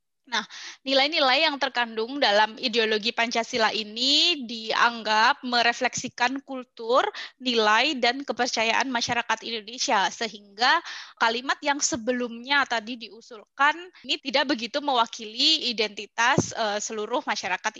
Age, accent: 20-39, native